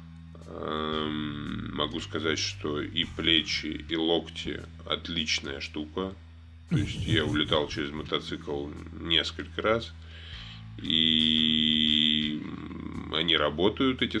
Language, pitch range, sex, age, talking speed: Russian, 80-95 Hz, male, 20-39, 90 wpm